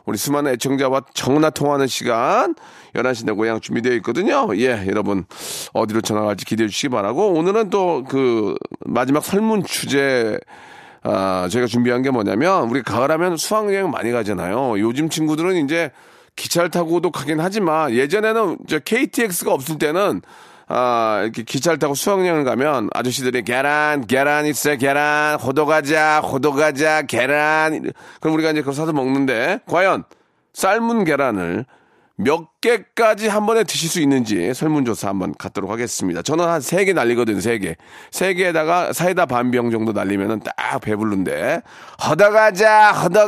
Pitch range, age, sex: 115-170 Hz, 40-59, male